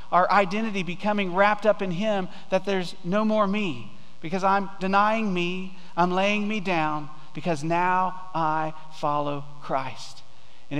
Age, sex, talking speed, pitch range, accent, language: 40-59, male, 145 wpm, 165-215 Hz, American, English